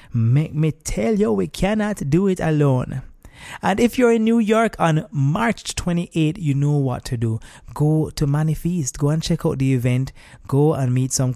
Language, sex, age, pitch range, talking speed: English, male, 20-39, 125-170 Hz, 190 wpm